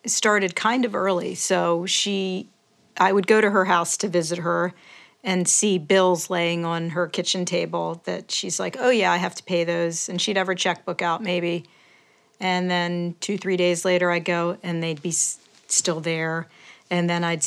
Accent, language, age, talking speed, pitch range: American, English, 50-69, 190 wpm, 170-190 Hz